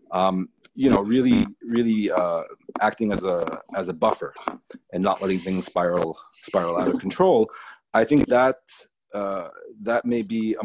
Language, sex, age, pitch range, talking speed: English, male, 30-49, 90-115 Hz, 165 wpm